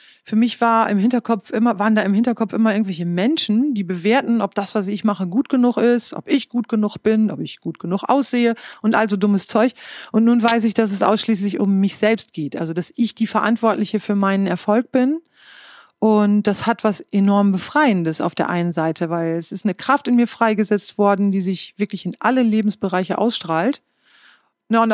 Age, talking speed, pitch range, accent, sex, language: 40-59, 205 wpm, 185-230 Hz, German, female, German